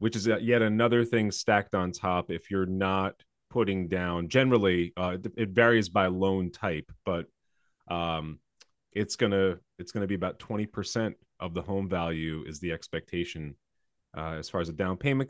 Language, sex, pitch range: English, male, 85-105 Hz